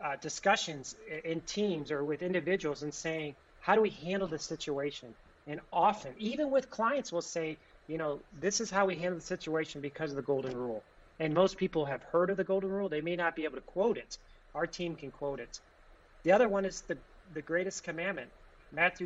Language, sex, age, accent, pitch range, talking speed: English, male, 30-49, American, 150-180 Hz, 210 wpm